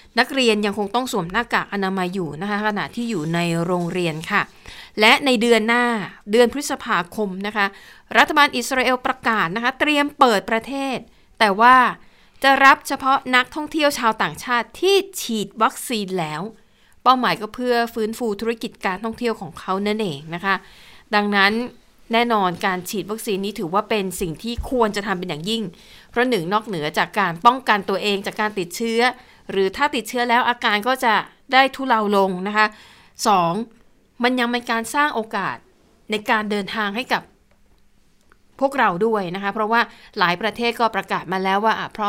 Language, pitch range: Thai, 195-240 Hz